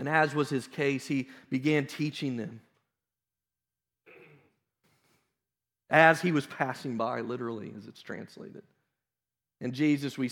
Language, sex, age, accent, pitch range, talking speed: English, male, 40-59, American, 115-145 Hz, 120 wpm